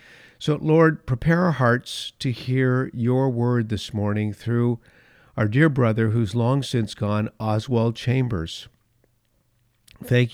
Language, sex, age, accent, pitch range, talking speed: English, male, 50-69, American, 105-130 Hz, 130 wpm